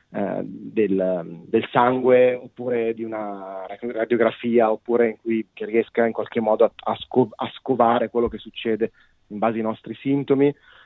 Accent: native